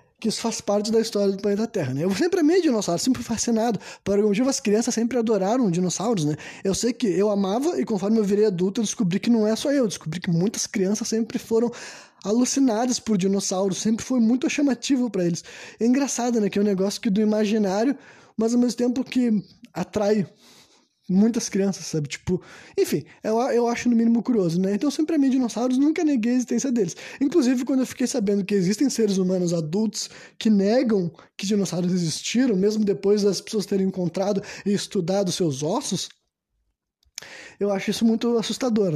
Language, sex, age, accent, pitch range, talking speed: Portuguese, male, 20-39, Brazilian, 195-250 Hz, 195 wpm